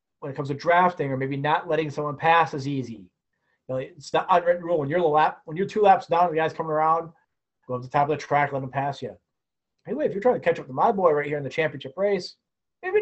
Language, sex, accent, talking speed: English, male, American, 285 wpm